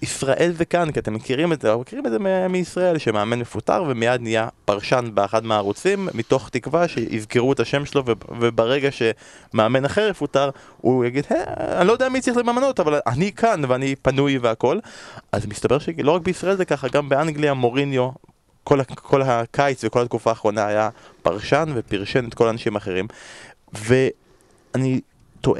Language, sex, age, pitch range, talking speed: Hebrew, male, 20-39, 110-145 Hz, 165 wpm